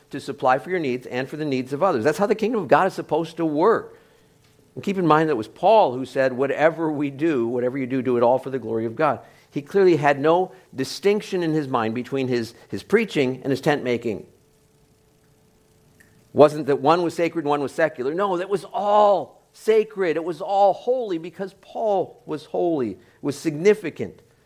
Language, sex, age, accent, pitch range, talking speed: English, male, 50-69, American, 120-155 Hz, 215 wpm